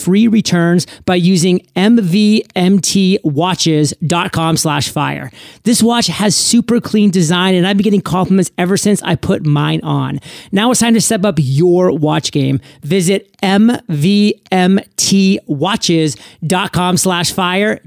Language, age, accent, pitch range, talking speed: English, 30-49, American, 160-205 Hz, 125 wpm